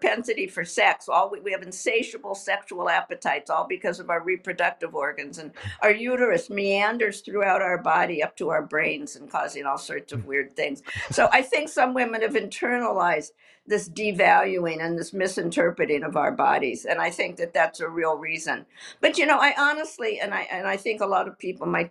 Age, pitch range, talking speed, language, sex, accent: 50-69, 185-275 Hz, 195 wpm, English, female, American